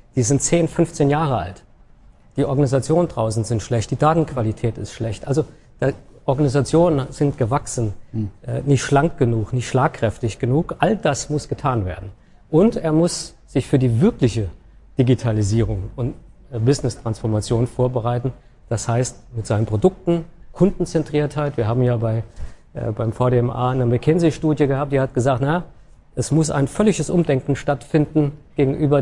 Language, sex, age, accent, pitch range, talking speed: German, male, 50-69, German, 120-150 Hz, 140 wpm